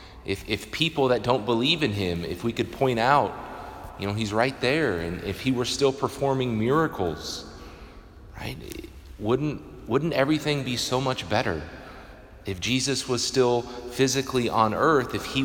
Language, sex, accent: English, male, American